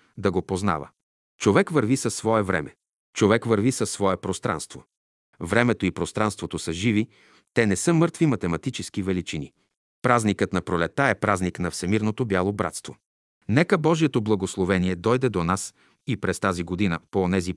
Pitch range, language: 95-125 Hz, Bulgarian